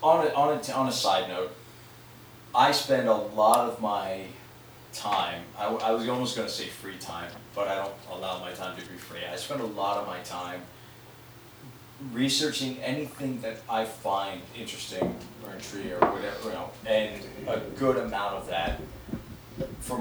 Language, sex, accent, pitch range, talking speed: English, male, American, 95-125 Hz, 175 wpm